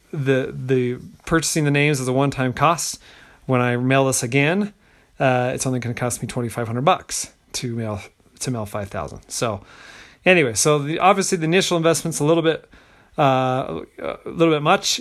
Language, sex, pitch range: English, male, 130-160 Hz